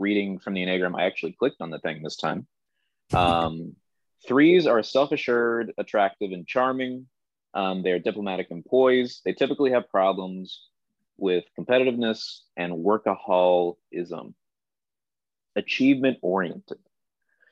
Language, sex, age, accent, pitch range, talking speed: English, male, 30-49, American, 95-130 Hz, 110 wpm